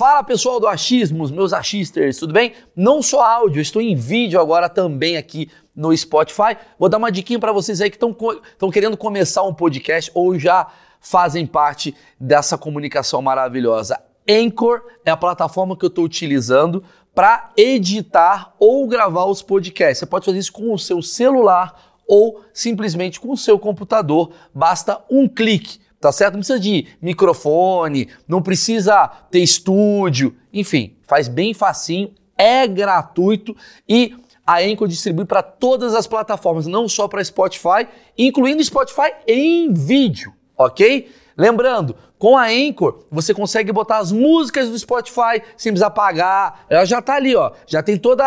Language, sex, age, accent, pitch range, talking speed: Portuguese, male, 30-49, Brazilian, 170-230 Hz, 155 wpm